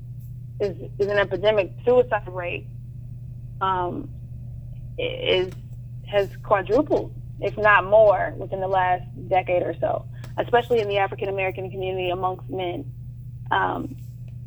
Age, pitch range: 20-39, 120-205 Hz